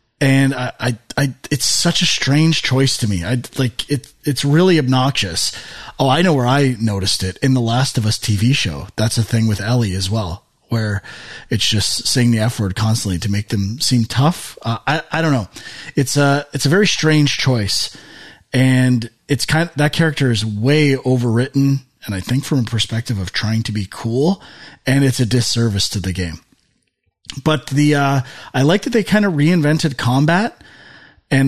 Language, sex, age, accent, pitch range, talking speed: English, male, 30-49, American, 115-150 Hz, 195 wpm